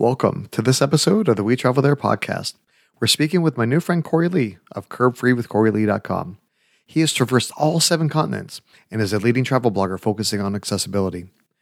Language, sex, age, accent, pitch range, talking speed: English, male, 30-49, American, 105-150 Hz, 180 wpm